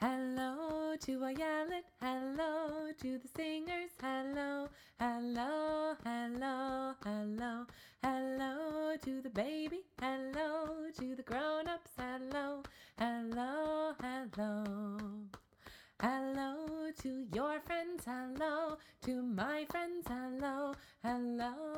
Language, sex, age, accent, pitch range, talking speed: English, female, 30-49, American, 240-310 Hz, 95 wpm